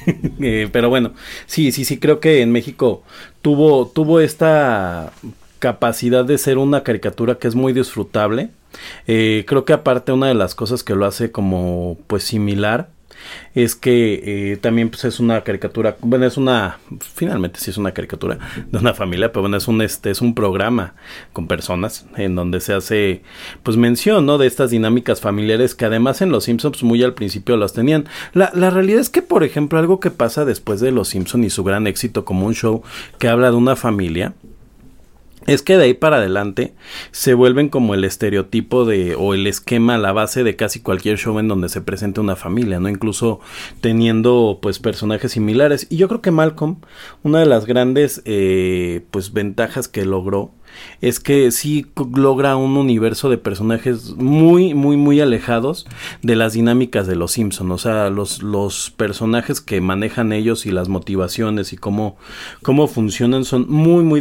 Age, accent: 30-49, Mexican